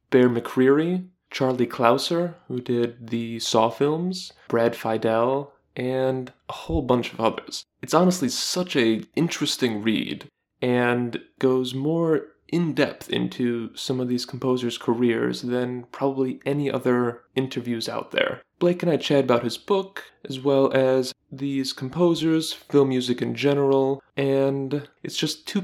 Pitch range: 120-140 Hz